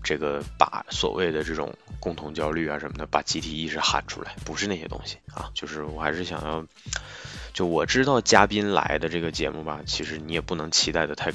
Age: 20-39